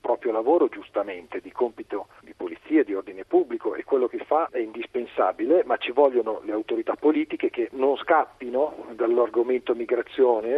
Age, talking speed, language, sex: 40-59, 155 wpm, Italian, male